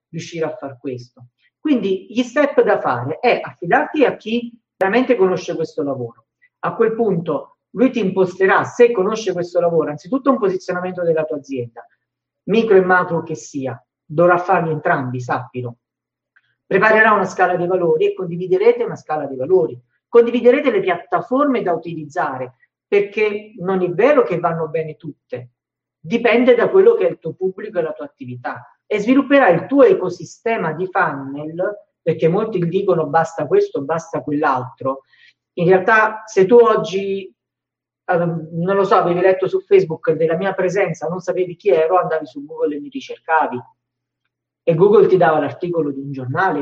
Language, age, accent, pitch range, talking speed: Italian, 50-69, native, 155-215 Hz, 160 wpm